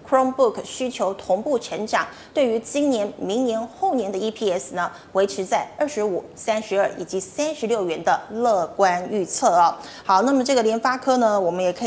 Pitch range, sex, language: 195-250 Hz, female, Chinese